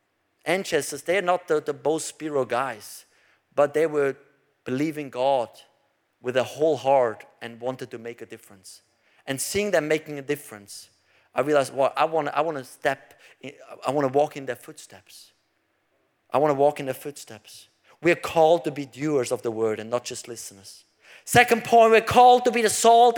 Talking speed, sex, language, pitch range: 185 wpm, male, English, 145-235 Hz